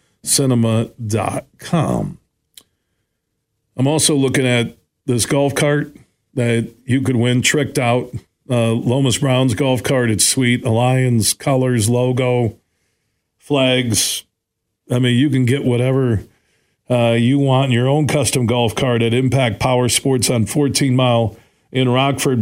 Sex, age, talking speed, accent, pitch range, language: male, 50-69, 130 wpm, American, 120-145 Hz, English